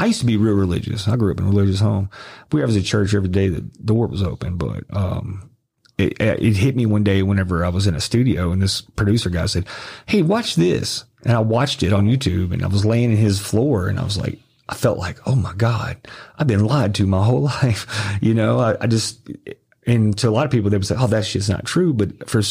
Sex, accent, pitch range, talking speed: male, American, 100-130 Hz, 260 wpm